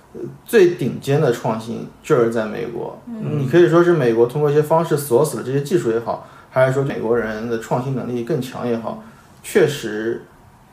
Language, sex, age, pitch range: Chinese, male, 20-39, 115-165 Hz